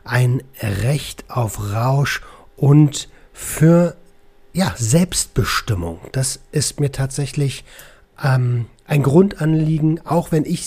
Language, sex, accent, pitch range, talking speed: German, male, German, 125-155 Hz, 100 wpm